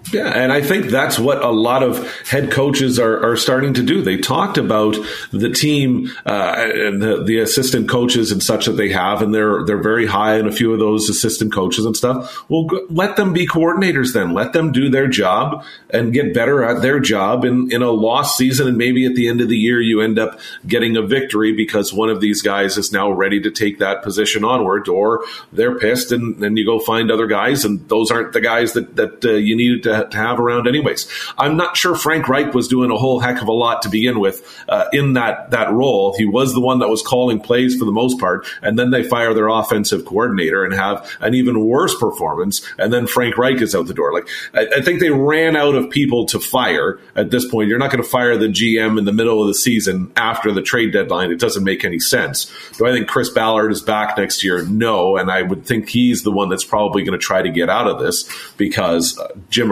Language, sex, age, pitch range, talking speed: English, male, 40-59, 110-130 Hz, 240 wpm